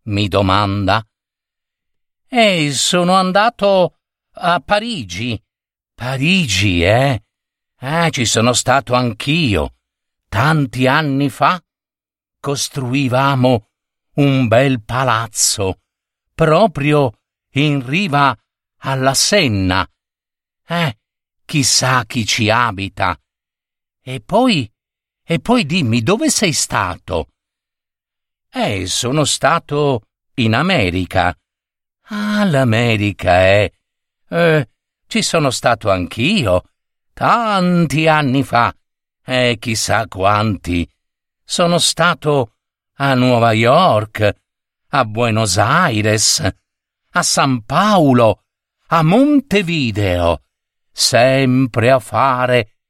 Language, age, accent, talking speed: Italian, 50-69, native, 85 wpm